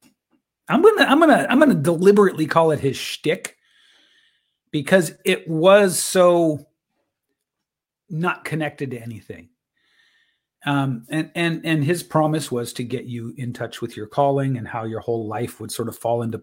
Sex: male